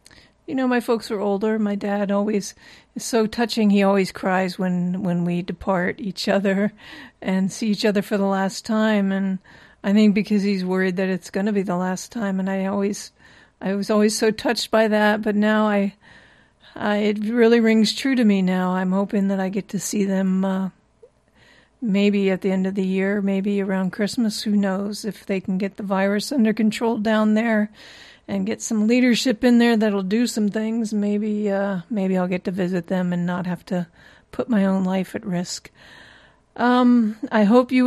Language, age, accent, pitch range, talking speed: English, 50-69, American, 195-230 Hz, 200 wpm